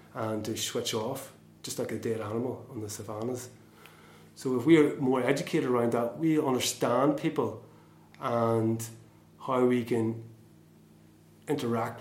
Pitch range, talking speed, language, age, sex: 110-130 Hz, 140 wpm, English, 30-49, male